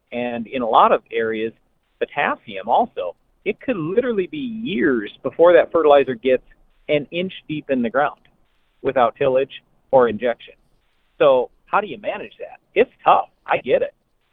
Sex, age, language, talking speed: male, 40-59, English, 160 wpm